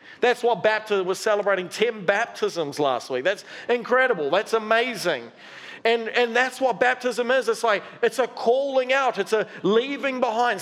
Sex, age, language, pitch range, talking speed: male, 40-59, English, 180-240 Hz, 165 wpm